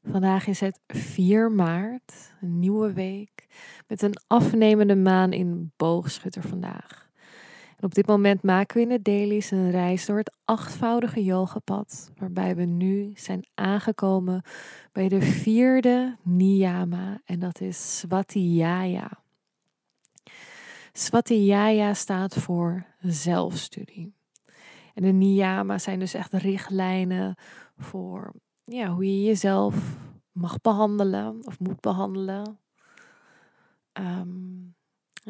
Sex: female